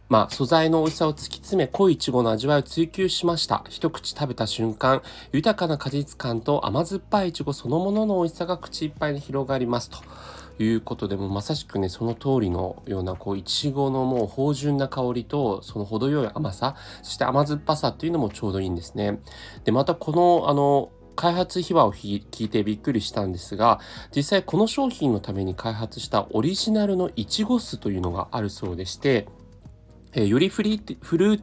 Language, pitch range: Japanese, 105-165 Hz